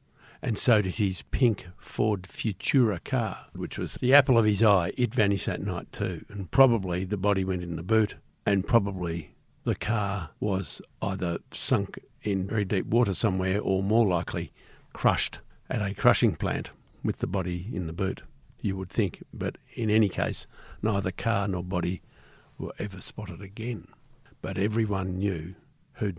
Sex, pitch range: male, 95-115 Hz